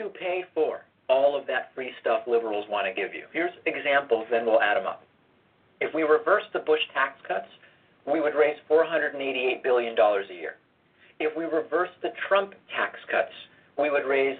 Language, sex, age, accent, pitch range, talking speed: English, male, 40-59, American, 125-160 Hz, 185 wpm